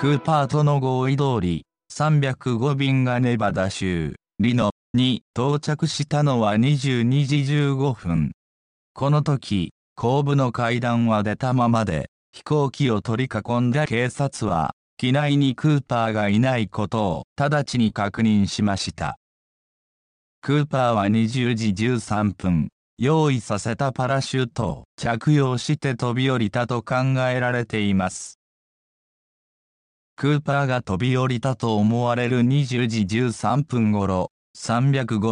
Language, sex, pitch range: Japanese, male, 105-135 Hz